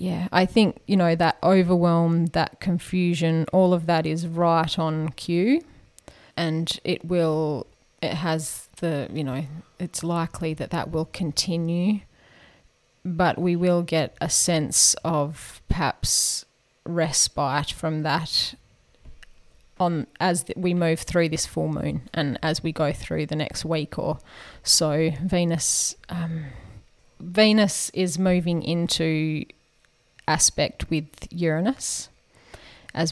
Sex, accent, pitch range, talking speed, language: female, Australian, 155-180 Hz, 125 wpm, English